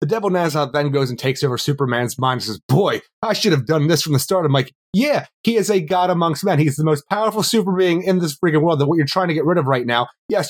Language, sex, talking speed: English, male, 290 wpm